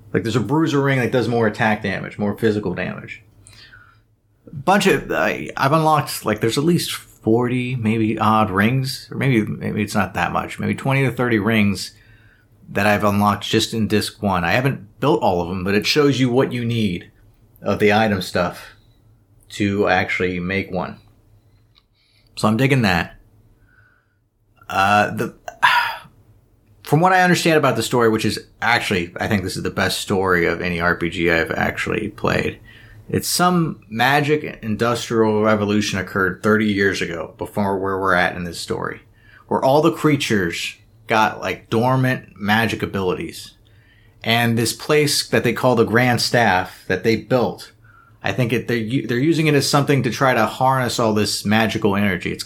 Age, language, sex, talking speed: 30-49, English, male, 170 wpm